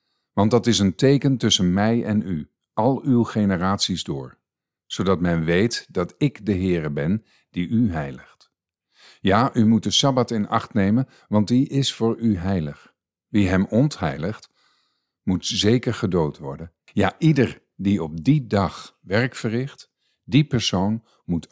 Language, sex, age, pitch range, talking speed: Dutch, male, 50-69, 90-115 Hz, 155 wpm